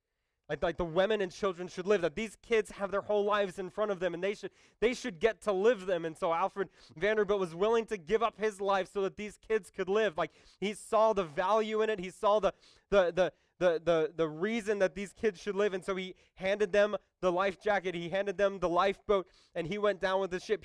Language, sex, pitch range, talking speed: English, male, 155-200 Hz, 245 wpm